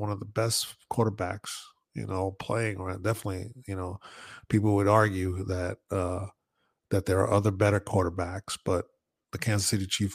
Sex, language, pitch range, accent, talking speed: male, English, 95-125 Hz, American, 170 wpm